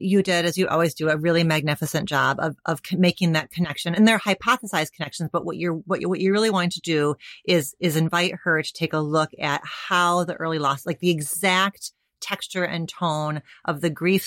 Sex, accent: female, American